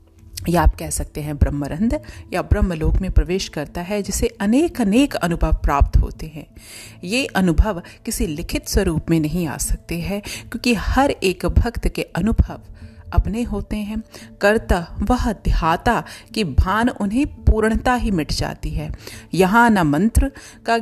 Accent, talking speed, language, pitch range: native, 155 wpm, Hindi, 165-230 Hz